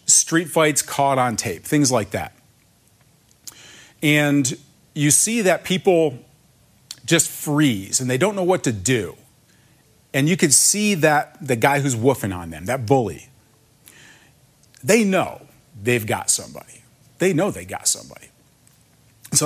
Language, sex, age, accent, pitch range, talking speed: English, male, 40-59, American, 120-150 Hz, 140 wpm